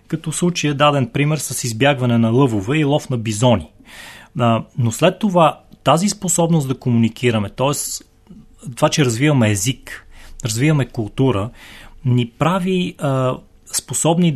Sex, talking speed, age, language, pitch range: male, 135 wpm, 30-49, Bulgarian, 120-150 Hz